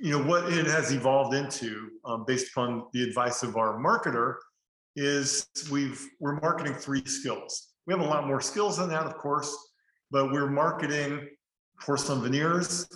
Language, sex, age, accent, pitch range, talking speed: English, male, 40-59, American, 125-145 Hz, 175 wpm